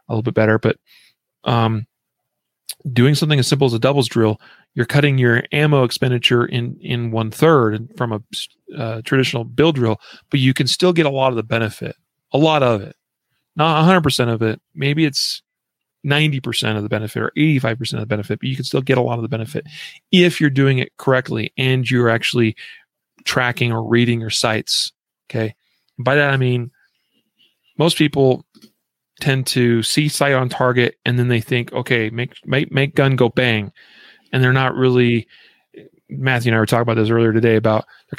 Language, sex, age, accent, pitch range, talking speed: English, male, 40-59, American, 115-140 Hz, 185 wpm